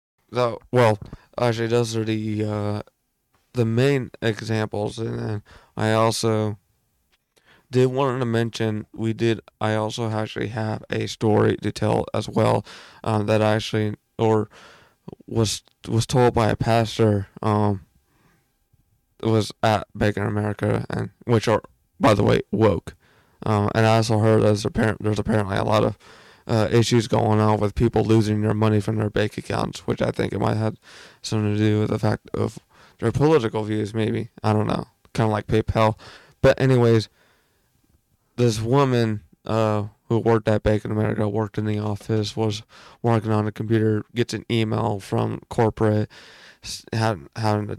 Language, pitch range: English, 105-115 Hz